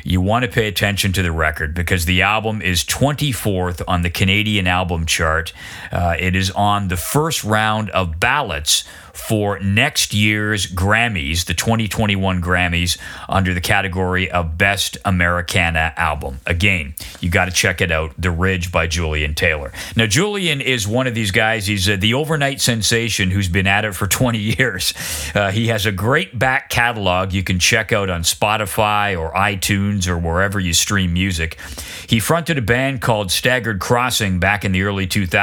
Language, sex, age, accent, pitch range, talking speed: English, male, 40-59, American, 90-115 Hz, 175 wpm